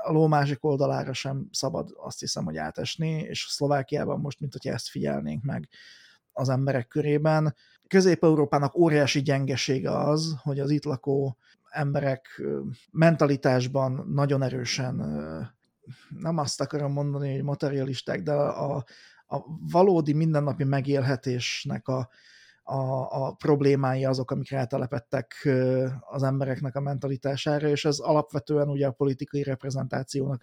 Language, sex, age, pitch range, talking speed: Hungarian, male, 30-49, 135-150 Hz, 120 wpm